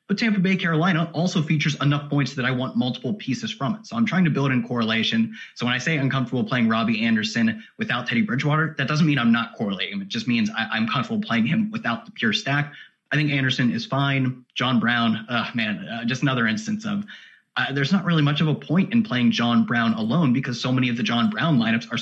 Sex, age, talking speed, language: male, 30-49, 230 wpm, English